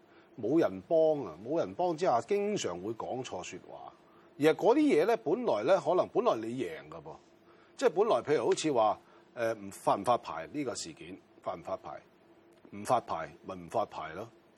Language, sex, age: Chinese, male, 30-49